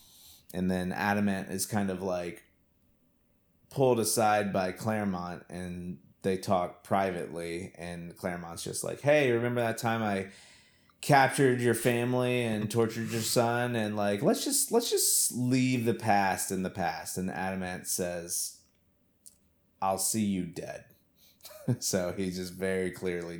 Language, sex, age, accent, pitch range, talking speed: English, male, 30-49, American, 90-115 Hz, 140 wpm